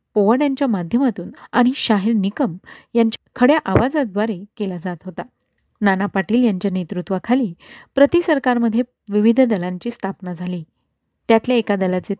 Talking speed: 120 wpm